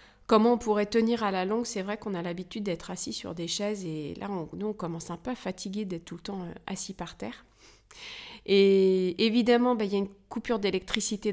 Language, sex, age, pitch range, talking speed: French, female, 30-49, 175-205 Hz, 230 wpm